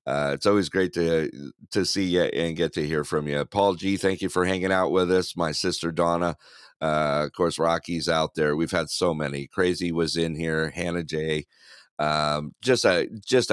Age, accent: 50-69, American